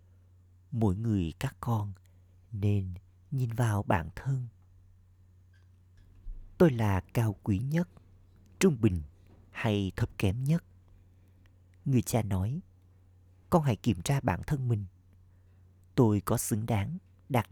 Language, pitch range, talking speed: Vietnamese, 90-110 Hz, 120 wpm